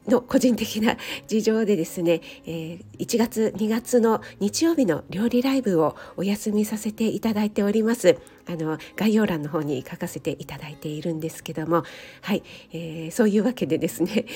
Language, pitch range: Japanese, 165-235 Hz